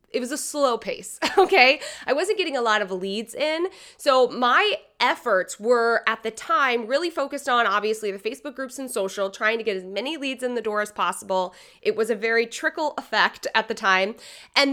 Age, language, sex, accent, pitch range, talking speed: 20-39, English, female, American, 215-285 Hz, 210 wpm